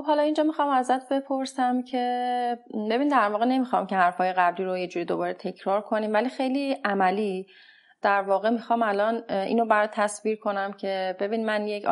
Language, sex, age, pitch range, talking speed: Persian, female, 30-49, 195-240 Hz, 170 wpm